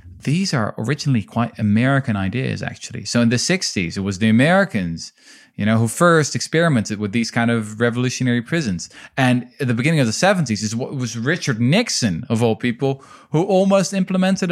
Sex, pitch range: male, 105-140 Hz